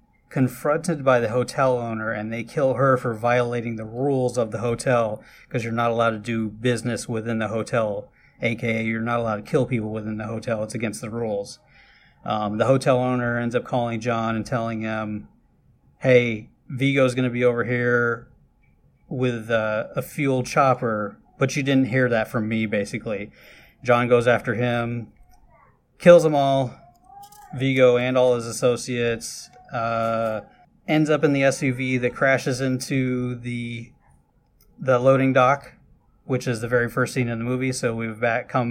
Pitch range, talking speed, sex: 115-130 Hz, 165 wpm, male